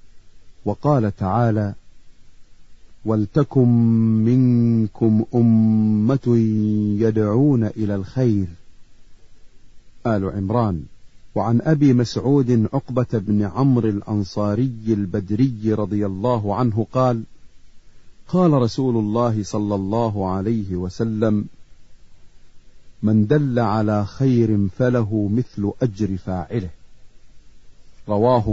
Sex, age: male, 40-59